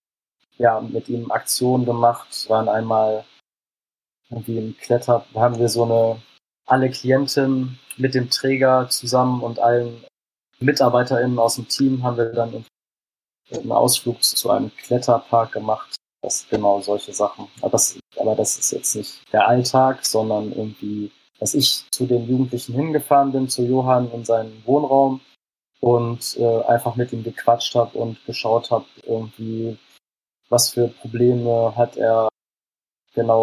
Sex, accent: male, German